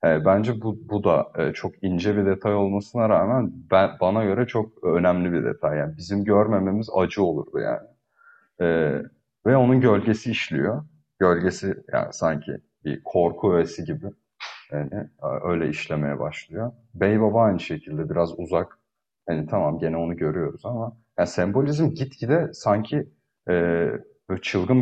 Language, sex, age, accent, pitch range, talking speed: Turkish, male, 30-49, native, 90-115 Hz, 135 wpm